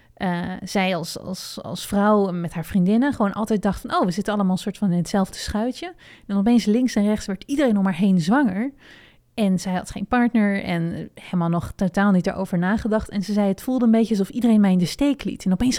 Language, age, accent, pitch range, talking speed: Dutch, 20-39, Dutch, 185-215 Hz, 230 wpm